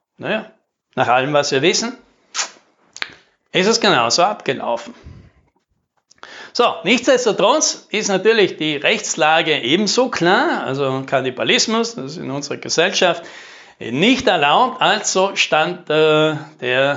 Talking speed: 110 wpm